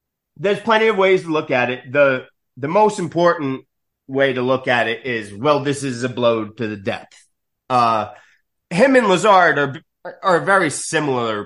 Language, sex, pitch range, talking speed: English, male, 125-170 Hz, 180 wpm